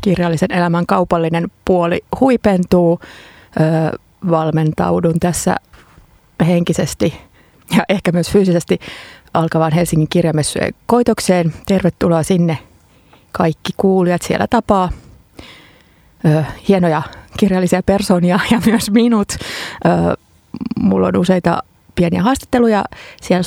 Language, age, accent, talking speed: Finnish, 30-49, native, 95 wpm